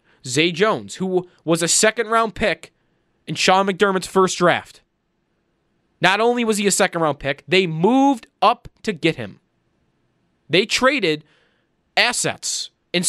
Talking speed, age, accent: 135 wpm, 20-39, American